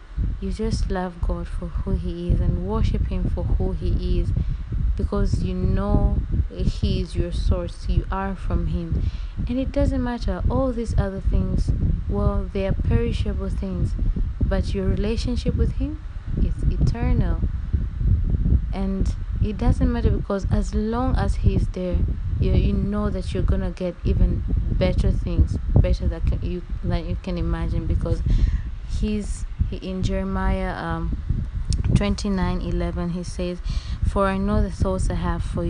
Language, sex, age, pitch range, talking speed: English, female, 20-39, 85-100 Hz, 155 wpm